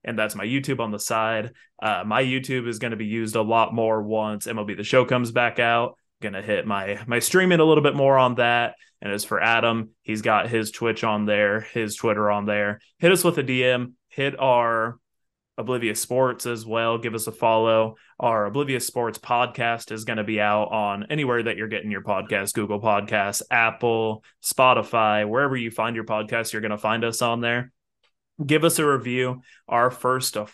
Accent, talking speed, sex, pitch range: American, 205 wpm, male, 110-125 Hz